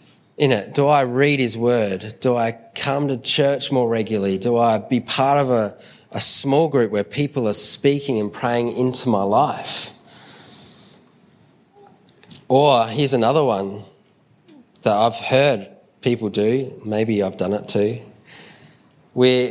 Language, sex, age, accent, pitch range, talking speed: English, male, 20-39, Australian, 110-140 Hz, 145 wpm